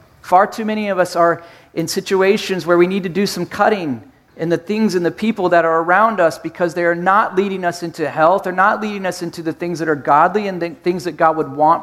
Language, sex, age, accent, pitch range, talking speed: English, male, 40-59, American, 160-195 Hz, 255 wpm